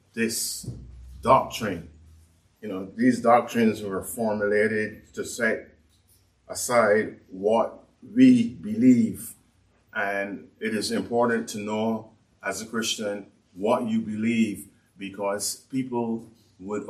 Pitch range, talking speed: 105-120 Hz, 105 wpm